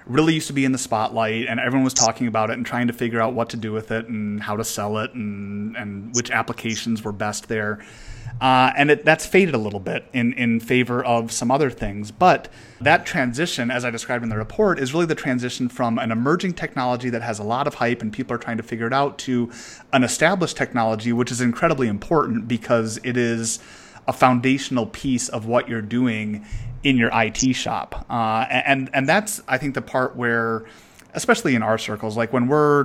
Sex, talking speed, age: male, 215 wpm, 30-49